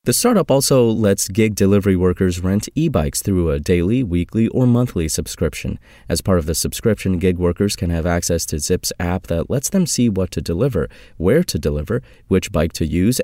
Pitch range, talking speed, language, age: 85-115 Hz, 195 wpm, English, 30-49